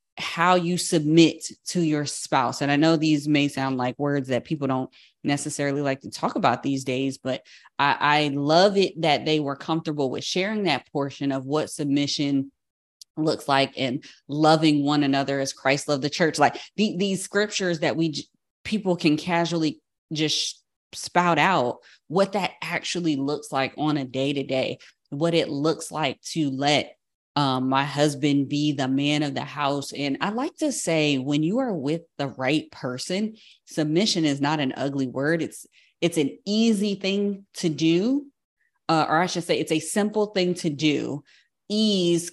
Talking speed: 180 wpm